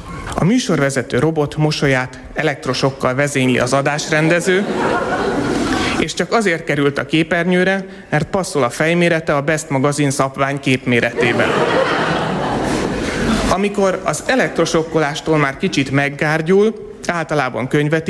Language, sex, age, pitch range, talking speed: Hungarian, male, 30-49, 135-175 Hz, 105 wpm